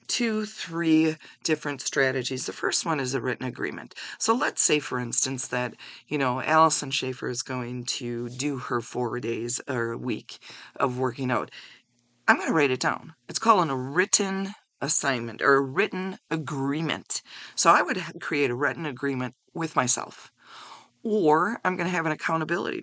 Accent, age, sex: American, 40-59, female